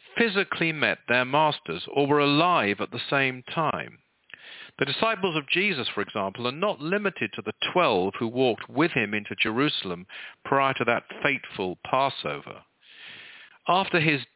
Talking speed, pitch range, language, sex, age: 150 wpm, 125-170 Hz, English, male, 50-69